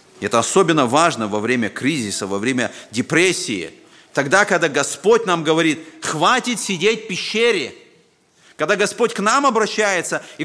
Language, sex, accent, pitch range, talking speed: Russian, male, native, 150-220 Hz, 140 wpm